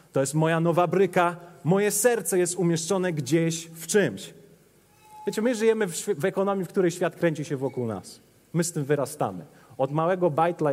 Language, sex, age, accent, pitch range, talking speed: Polish, male, 30-49, native, 160-205 Hz, 180 wpm